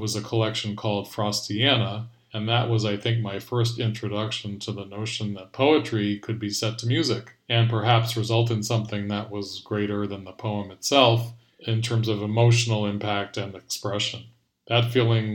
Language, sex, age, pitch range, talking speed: English, male, 40-59, 105-115 Hz, 170 wpm